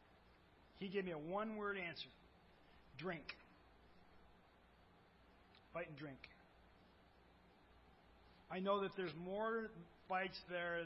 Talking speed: 95 wpm